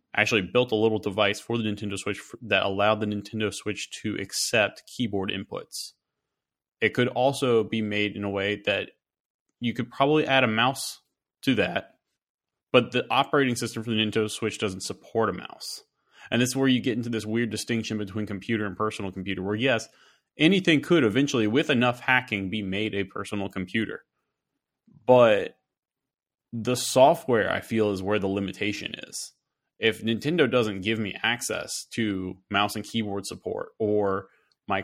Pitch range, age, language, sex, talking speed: 105-125 Hz, 20-39, English, male, 170 wpm